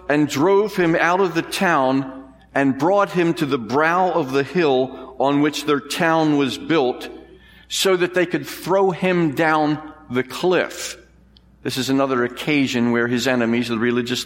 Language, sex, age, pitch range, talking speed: English, male, 50-69, 120-160 Hz, 170 wpm